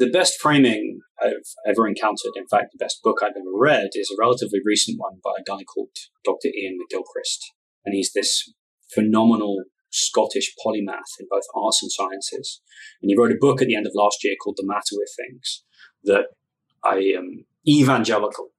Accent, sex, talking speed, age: British, male, 185 wpm, 20-39